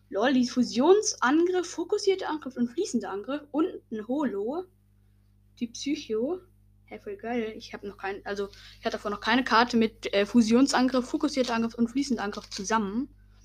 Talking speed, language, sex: 160 wpm, German, female